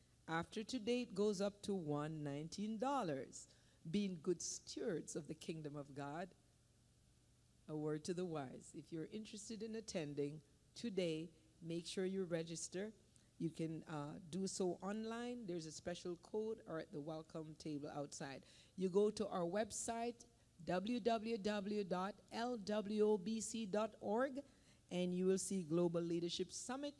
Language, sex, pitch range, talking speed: English, female, 170-230 Hz, 130 wpm